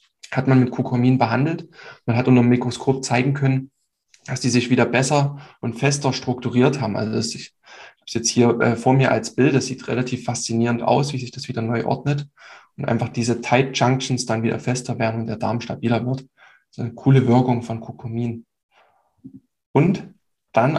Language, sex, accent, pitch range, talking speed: German, male, German, 120-135 Hz, 185 wpm